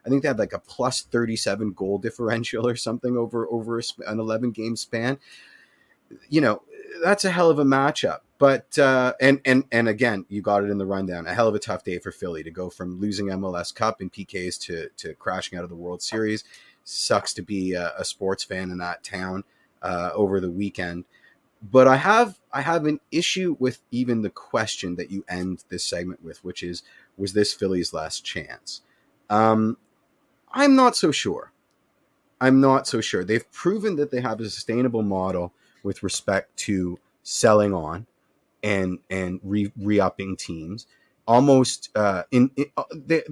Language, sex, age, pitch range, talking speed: English, male, 30-49, 95-125 Hz, 185 wpm